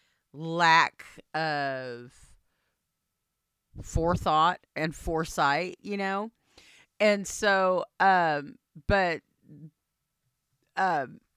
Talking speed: 65 wpm